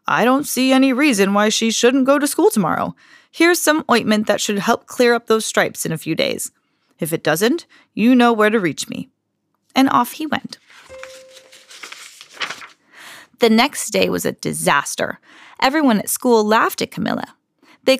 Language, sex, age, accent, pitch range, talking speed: English, female, 20-39, American, 215-295 Hz, 175 wpm